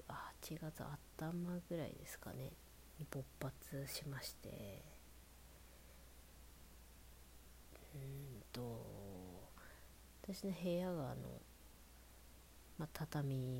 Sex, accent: female, native